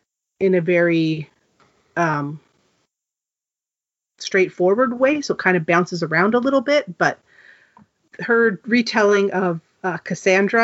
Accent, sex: American, female